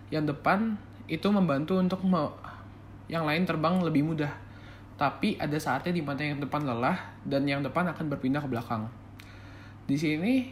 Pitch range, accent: 120-160 Hz, native